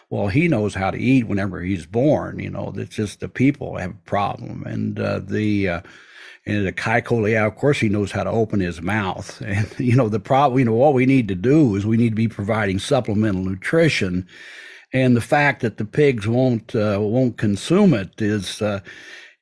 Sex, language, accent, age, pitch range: male, Chinese, American, 60-79, 100-130 Hz